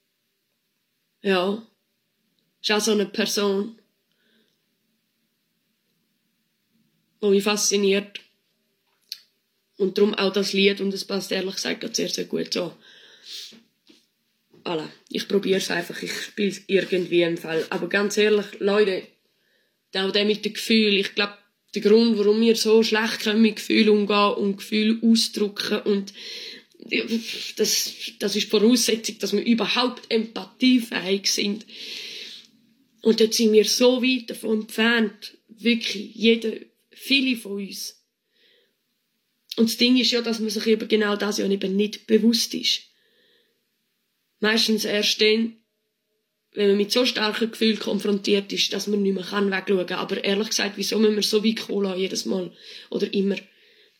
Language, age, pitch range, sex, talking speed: German, 20-39, 200-225 Hz, female, 140 wpm